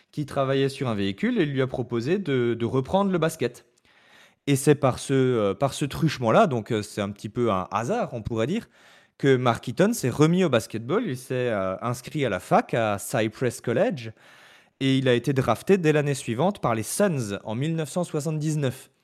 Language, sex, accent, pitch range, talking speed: French, male, French, 110-150 Hz, 200 wpm